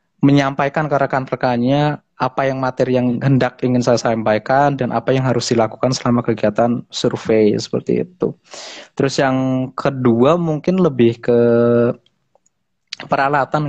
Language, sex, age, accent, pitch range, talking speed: Indonesian, male, 20-39, native, 120-135 Hz, 125 wpm